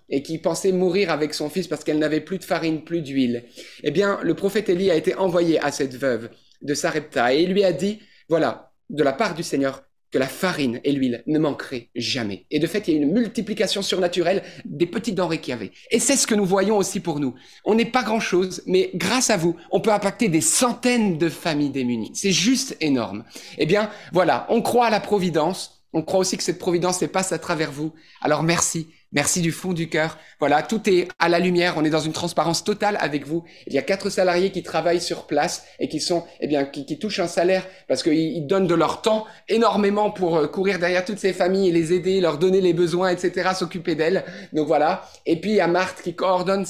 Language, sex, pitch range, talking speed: French, male, 165-205 Hz, 235 wpm